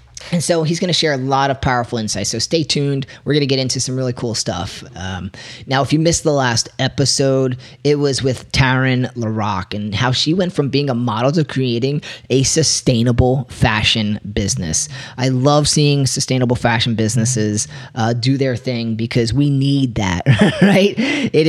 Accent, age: American, 30-49